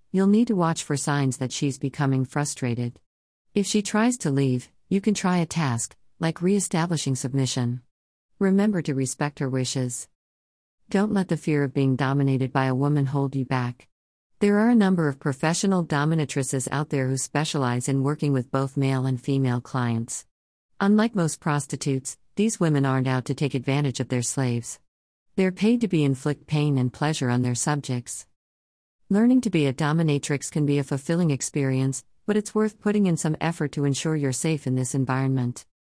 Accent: American